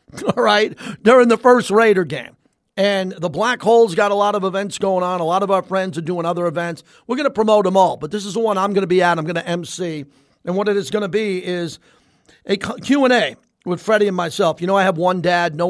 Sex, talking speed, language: male, 260 wpm, English